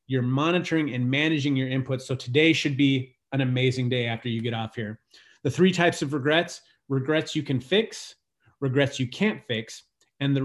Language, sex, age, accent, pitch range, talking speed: English, male, 30-49, American, 130-150 Hz, 190 wpm